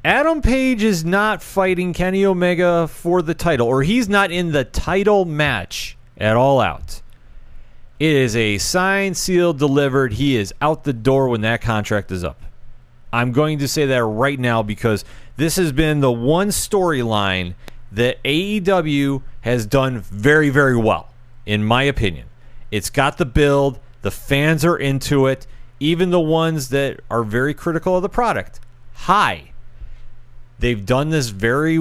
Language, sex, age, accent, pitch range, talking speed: English, male, 30-49, American, 120-160 Hz, 160 wpm